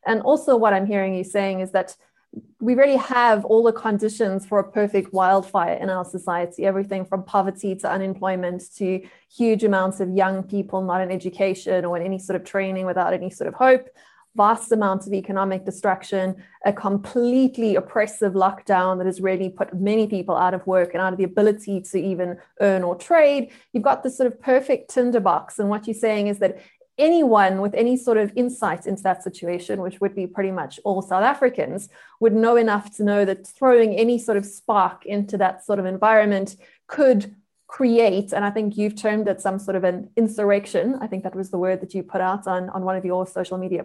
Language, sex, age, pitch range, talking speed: English, female, 20-39, 190-225 Hz, 205 wpm